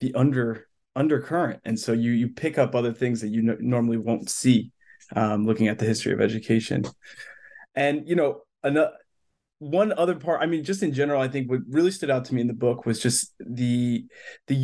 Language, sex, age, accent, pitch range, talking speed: English, male, 20-39, American, 125-175 Hz, 210 wpm